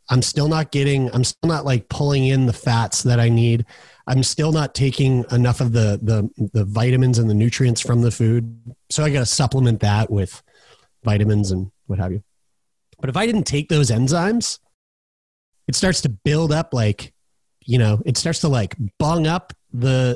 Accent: American